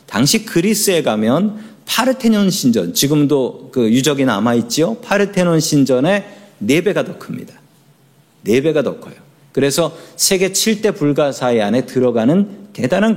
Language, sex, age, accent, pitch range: Korean, male, 40-59, native, 135-200 Hz